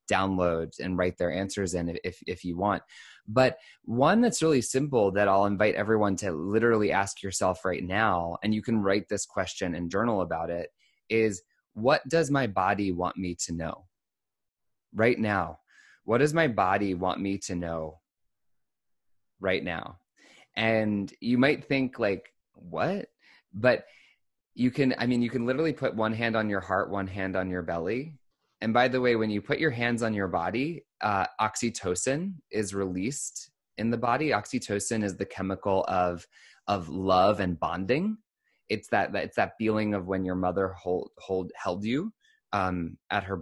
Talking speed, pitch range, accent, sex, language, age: 175 wpm, 90-125 Hz, American, male, English, 20-39